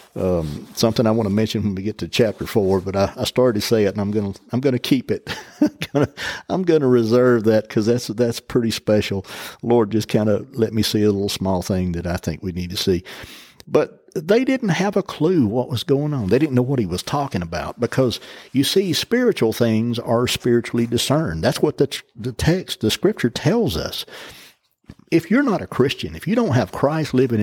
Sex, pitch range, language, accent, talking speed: male, 105-150 Hz, English, American, 225 wpm